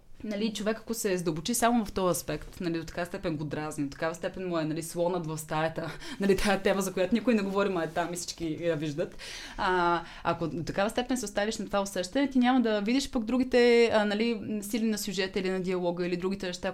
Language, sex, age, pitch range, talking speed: Bulgarian, female, 20-39, 160-215 Hz, 230 wpm